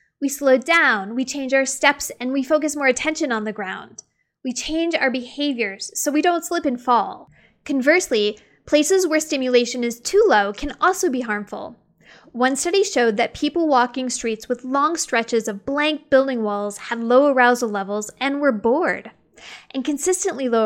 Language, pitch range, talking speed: English, 230-310 Hz, 175 wpm